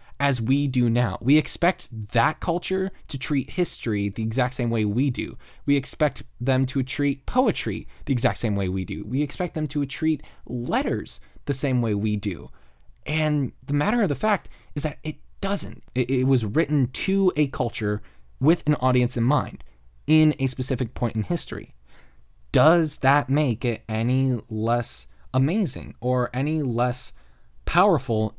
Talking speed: 165 wpm